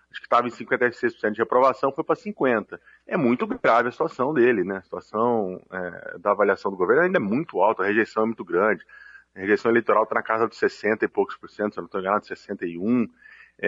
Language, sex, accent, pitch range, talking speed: Portuguese, male, Brazilian, 110-155 Hz, 220 wpm